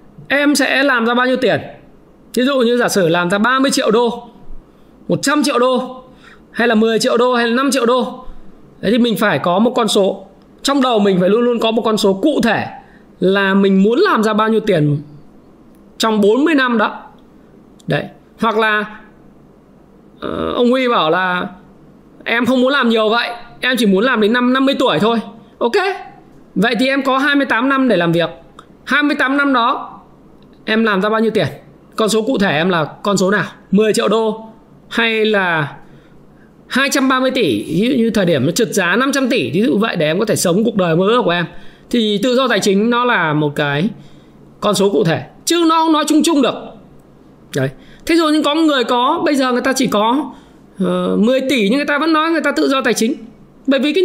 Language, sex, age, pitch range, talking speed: Vietnamese, male, 20-39, 205-265 Hz, 215 wpm